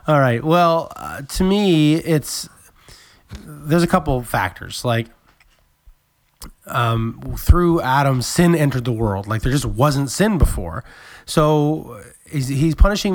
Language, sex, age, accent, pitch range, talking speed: English, male, 20-39, American, 120-155 Hz, 130 wpm